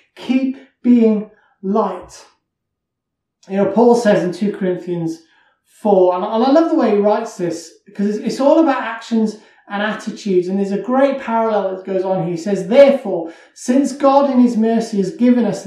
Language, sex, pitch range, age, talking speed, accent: English, male, 190-235 Hz, 30-49, 175 wpm, British